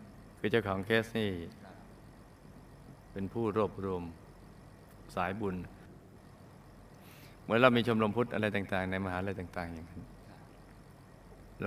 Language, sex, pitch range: Thai, male, 100-130 Hz